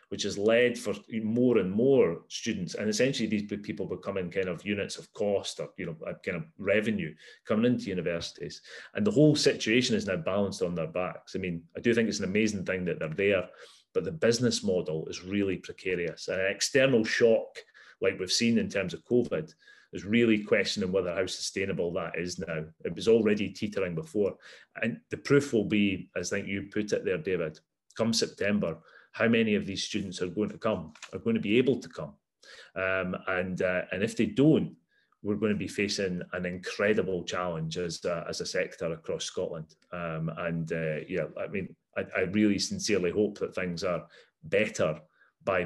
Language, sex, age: English, male, 30-49